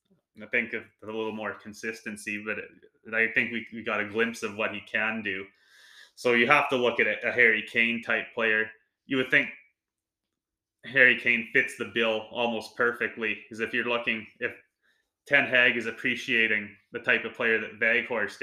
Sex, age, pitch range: male, 20-39, 110-120 Hz